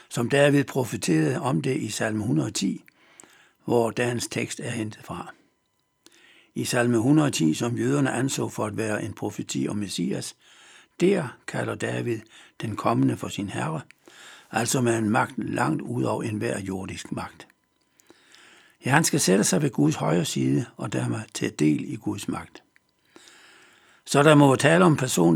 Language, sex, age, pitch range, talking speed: Danish, male, 60-79, 105-135 Hz, 160 wpm